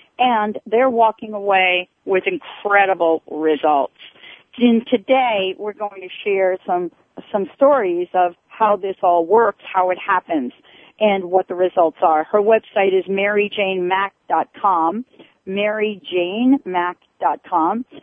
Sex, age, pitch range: female, 40-59, 185-245 Hz